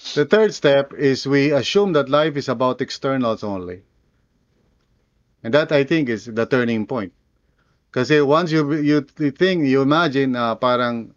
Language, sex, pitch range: English, male, 110-155 Hz